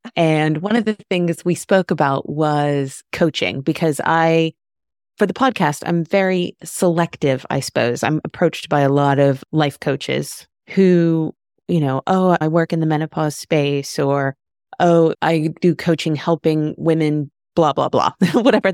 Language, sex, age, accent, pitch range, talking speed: English, female, 30-49, American, 140-180 Hz, 155 wpm